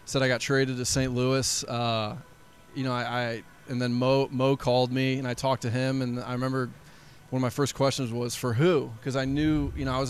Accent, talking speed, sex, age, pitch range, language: American, 245 wpm, male, 20-39, 125-145 Hz, English